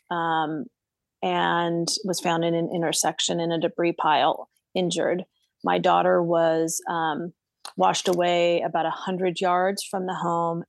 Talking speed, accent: 135 wpm, American